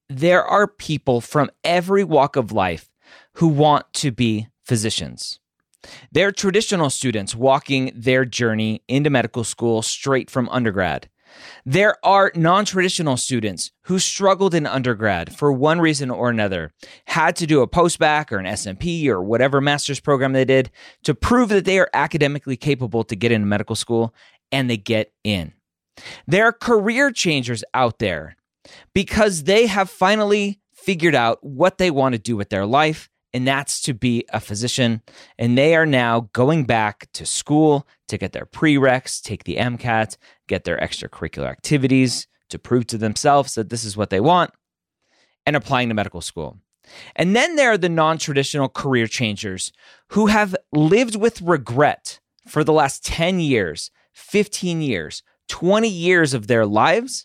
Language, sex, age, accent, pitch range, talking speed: English, male, 30-49, American, 115-170 Hz, 160 wpm